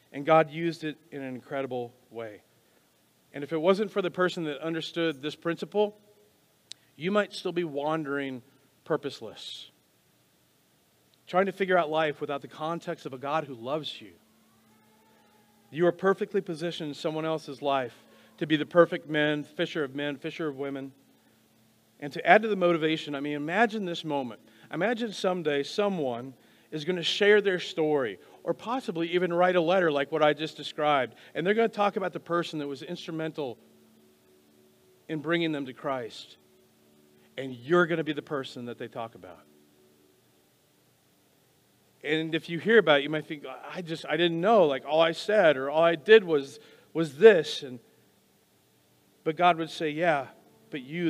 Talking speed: 175 wpm